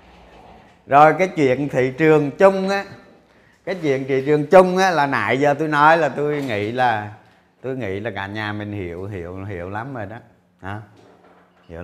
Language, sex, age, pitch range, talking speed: Vietnamese, male, 30-49, 125-185 Hz, 180 wpm